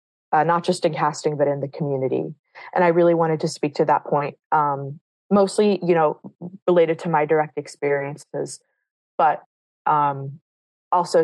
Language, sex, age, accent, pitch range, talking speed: English, female, 20-39, American, 145-180 Hz, 160 wpm